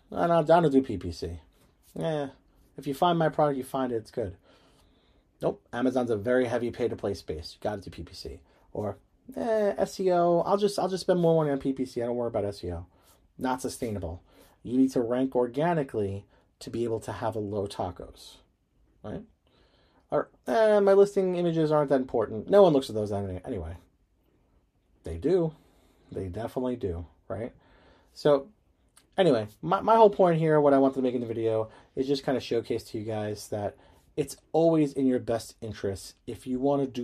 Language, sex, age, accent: English, male, 30-49, American